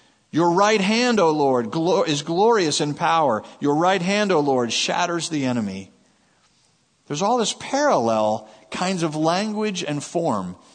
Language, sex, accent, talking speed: English, male, American, 145 wpm